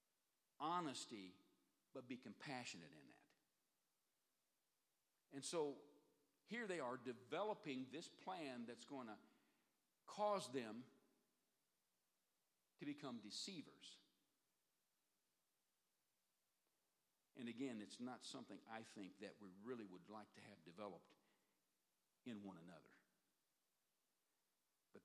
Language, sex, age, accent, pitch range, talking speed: English, male, 60-79, American, 110-160 Hz, 100 wpm